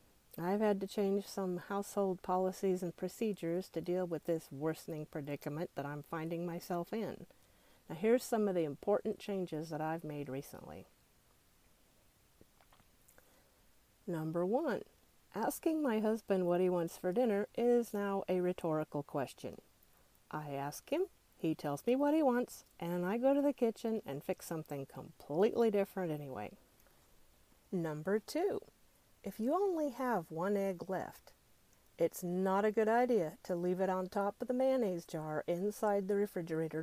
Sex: female